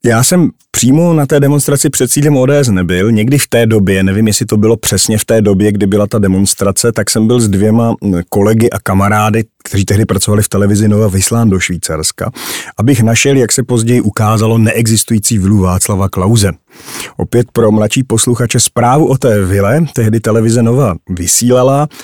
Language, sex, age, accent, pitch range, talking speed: Czech, male, 40-59, native, 100-120 Hz, 175 wpm